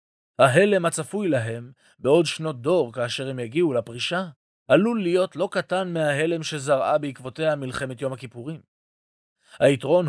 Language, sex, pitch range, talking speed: Hebrew, male, 125-175 Hz, 125 wpm